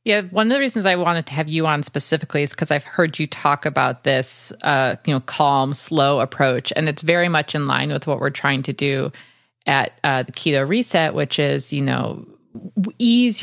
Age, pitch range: 30-49, 130-160 Hz